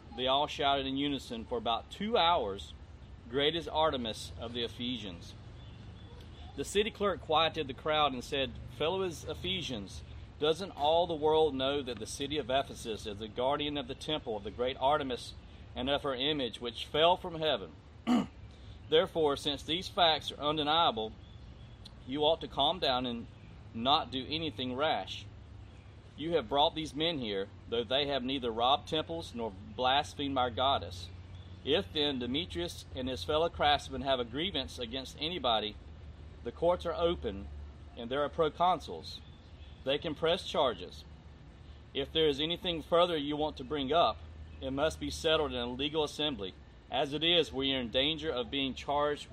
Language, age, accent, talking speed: English, 40-59, American, 165 wpm